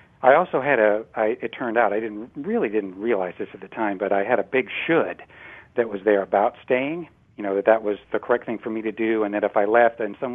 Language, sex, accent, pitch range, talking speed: English, male, American, 105-120 Hz, 265 wpm